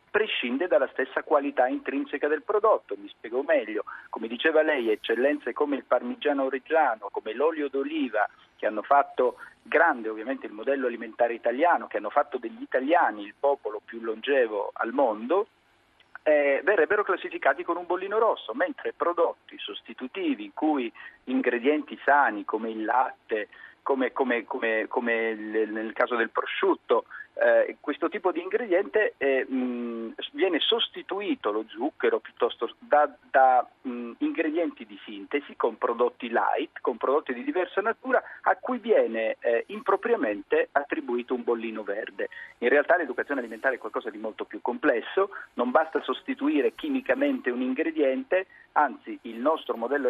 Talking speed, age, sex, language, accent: 145 wpm, 50-69, male, Italian, native